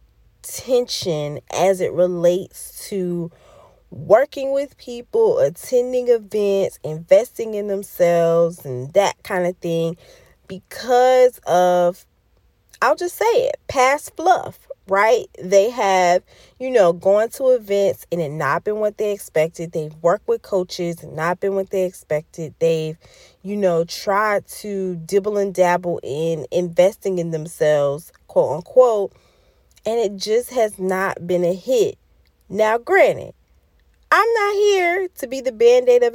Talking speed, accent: 140 wpm, American